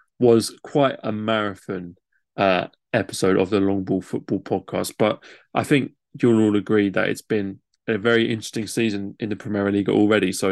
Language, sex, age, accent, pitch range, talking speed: English, male, 20-39, British, 95-115 Hz, 175 wpm